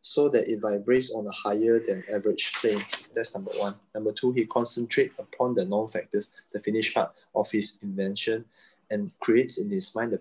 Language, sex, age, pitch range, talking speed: English, male, 20-39, 105-130 Hz, 190 wpm